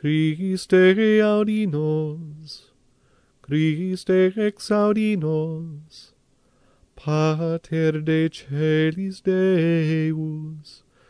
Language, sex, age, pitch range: English, male, 30-49, 155-185 Hz